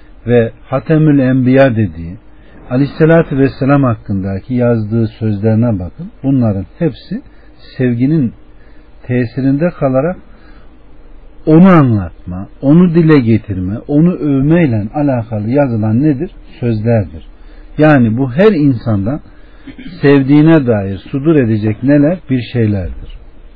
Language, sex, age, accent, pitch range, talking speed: Turkish, male, 60-79, native, 110-150 Hz, 95 wpm